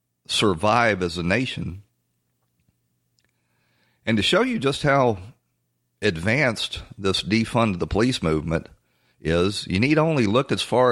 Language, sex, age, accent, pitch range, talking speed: English, male, 40-59, American, 85-115 Hz, 125 wpm